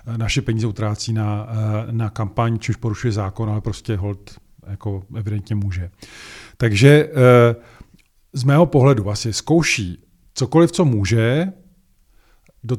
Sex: male